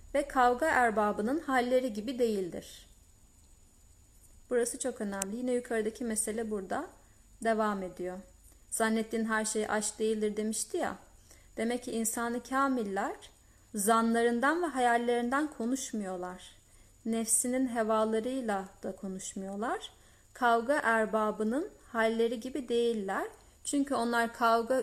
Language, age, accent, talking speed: Turkish, 30-49, native, 100 wpm